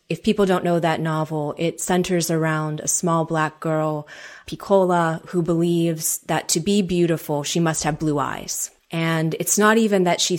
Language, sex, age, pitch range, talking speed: English, female, 30-49, 160-190 Hz, 180 wpm